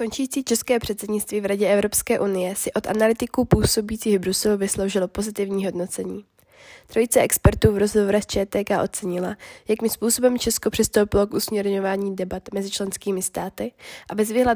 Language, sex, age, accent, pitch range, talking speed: Czech, female, 20-39, native, 195-220 Hz, 145 wpm